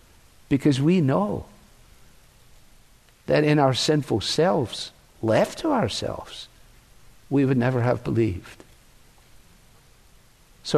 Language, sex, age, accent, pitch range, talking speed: English, male, 60-79, American, 105-125 Hz, 95 wpm